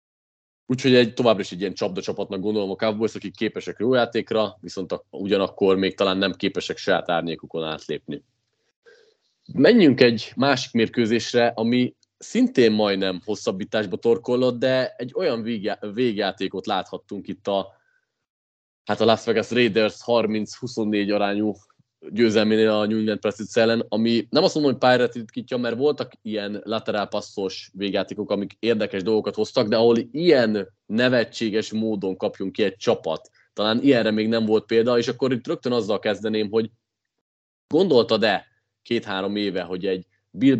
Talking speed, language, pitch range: 145 wpm, Hungarian, 100-120 Hz